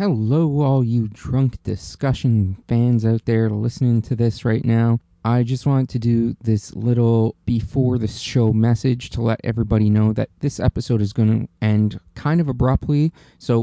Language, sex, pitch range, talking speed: English, male, 110-125 Hz, 170 wpm